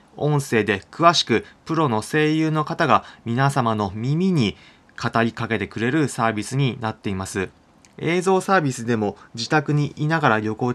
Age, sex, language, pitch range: 20-39, male, Japanese, 115-150 Hz